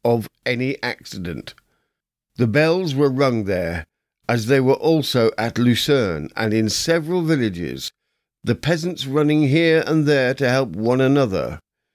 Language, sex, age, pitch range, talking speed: English, male, 50-69, 115-150 Hz, 140 wpm